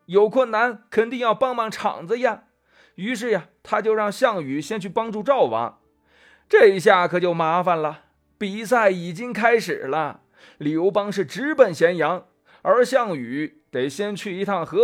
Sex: male